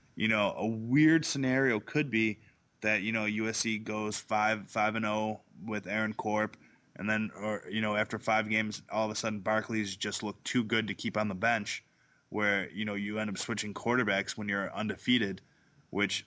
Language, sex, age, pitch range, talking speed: English, male, 20-39, 105-115 Hz, 190 wpm